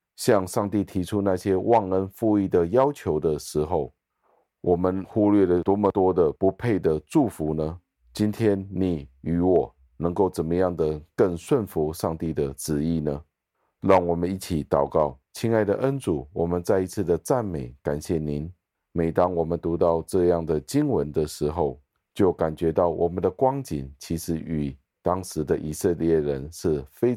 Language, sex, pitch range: Chinese, male, 80-100 Hz